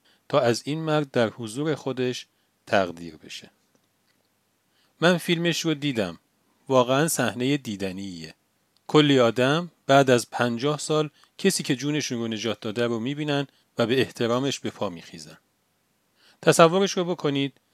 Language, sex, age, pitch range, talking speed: Persian, male, 40-59, 115-155 Hz, 130 wpm